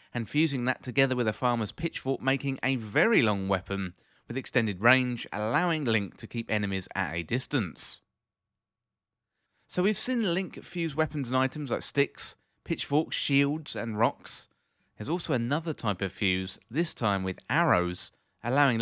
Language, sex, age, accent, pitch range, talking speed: English, male, 30-49, British, 105-140 Hz, 155 wpm